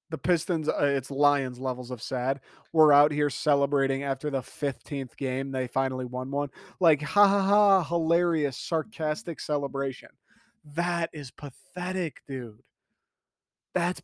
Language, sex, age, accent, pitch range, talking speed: English, male, 30-49, American, 135-155 Hz, 135 wpm